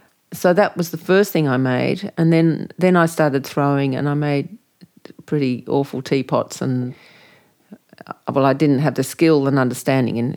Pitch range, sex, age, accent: 130-155 Hz, female, 50-69, Australian